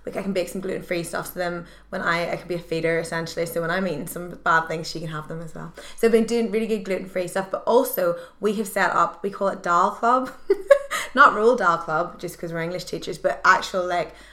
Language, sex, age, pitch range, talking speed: English, female, 20-39, 175-215 Hz, 255 wpm